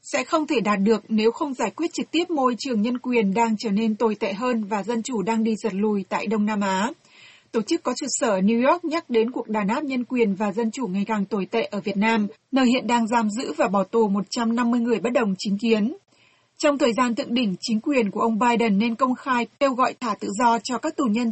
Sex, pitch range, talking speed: female, 215-265 Hz, 260 wpm